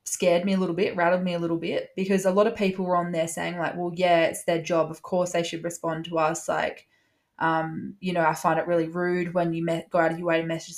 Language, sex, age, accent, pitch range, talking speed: English, female, 20-39, Australian, 170-205 Hz, 280 wpm